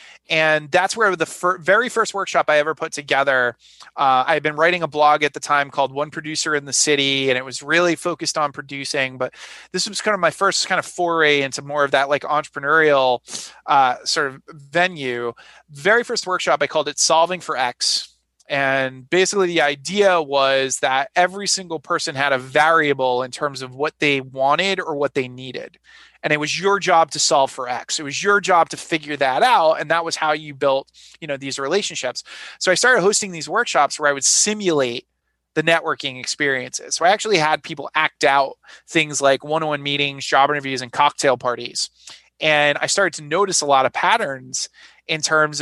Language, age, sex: English, 30-49, male